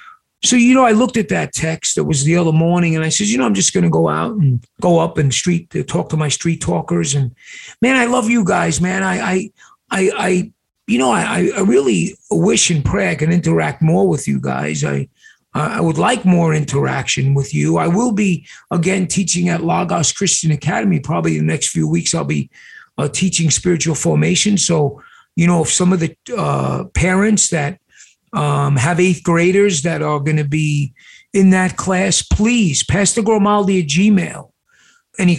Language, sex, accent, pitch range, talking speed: English, male, American, 145-190 Hz, 195 wpm